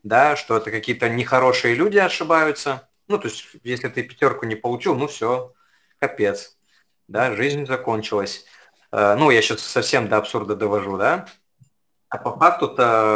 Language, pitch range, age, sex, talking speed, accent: Russian, 115-145 Hz, 20-39, male, 145 wpm, native